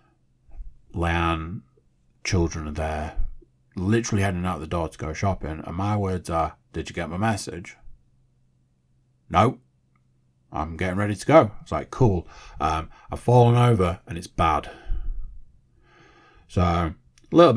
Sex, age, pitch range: male, 30-49, 80-115 Hz